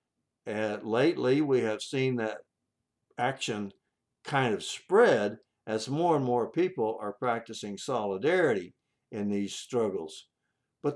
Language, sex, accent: English, male, American